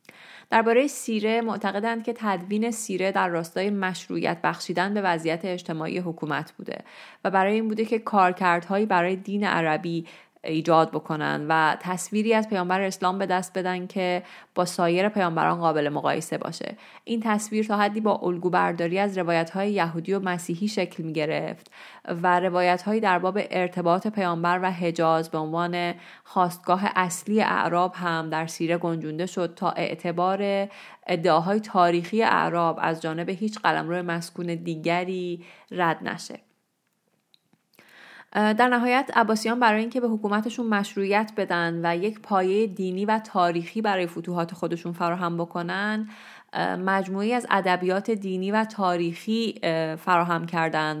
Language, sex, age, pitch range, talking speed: Persian, female, 30-49, 170-205 Hz, 135 wpm